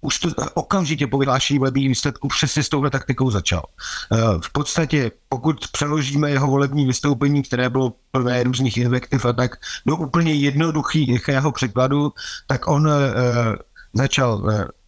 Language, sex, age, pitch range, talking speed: Slovak, male, 50-69, 115-140 Hz, 140 wpm